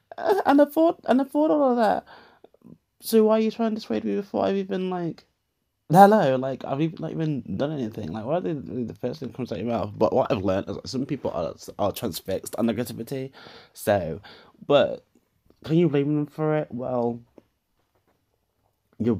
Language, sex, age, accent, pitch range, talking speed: English, male, 20-39, British, 105-140 Hz, 205 wpm